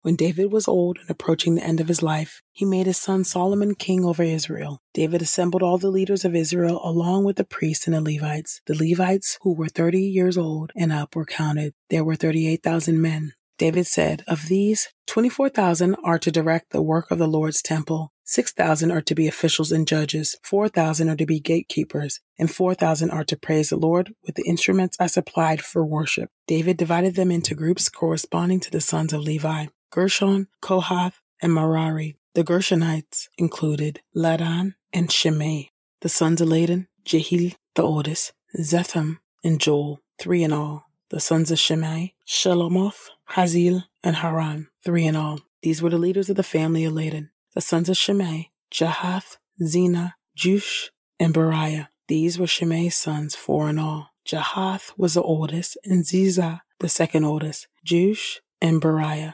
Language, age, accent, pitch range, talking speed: English, 40-59, American, 160-180 Hz, 175 wpm